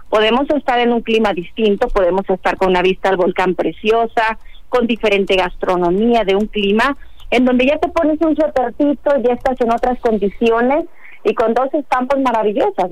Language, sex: Spanish, female